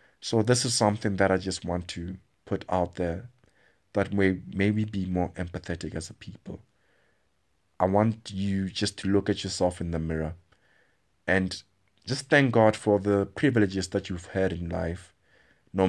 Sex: male